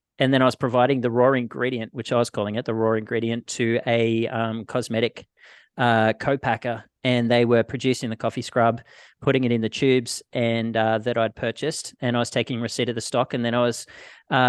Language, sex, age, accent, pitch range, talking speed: English, male, 30-49, Australian, 115-130 Hz, 215 wpm